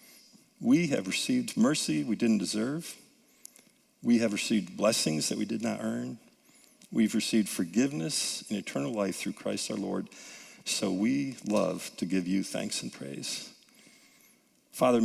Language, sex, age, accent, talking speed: English, male, 50-69, American, 145 wpm